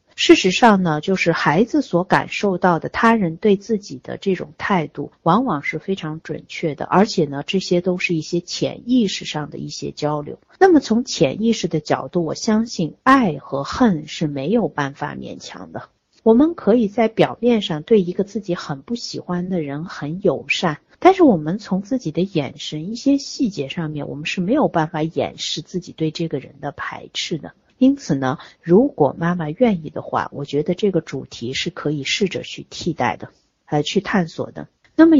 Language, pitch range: Chinese, 155-230 Hz